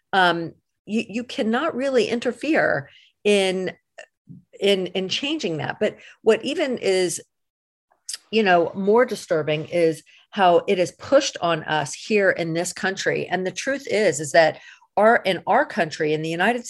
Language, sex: English, female